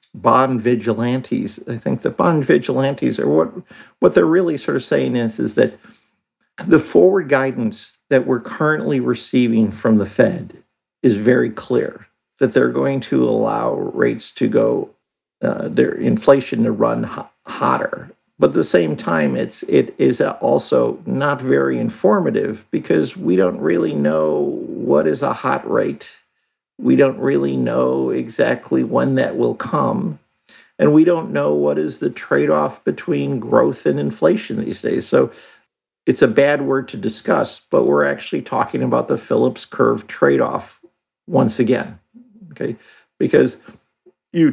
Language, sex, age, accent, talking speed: English, male, 50-69, American, 150 wpm